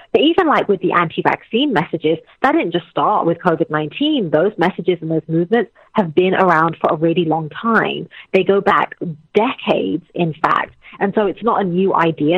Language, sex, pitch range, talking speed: English, female, 165-210 Hz, 185 wpm